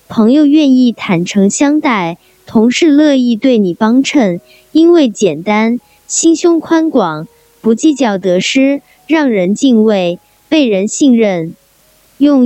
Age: 20-39